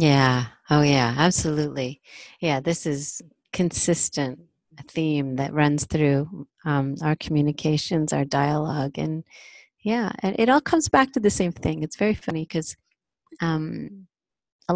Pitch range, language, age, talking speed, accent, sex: 150-175 Hz, English, 30-49, 140 wpm, American, female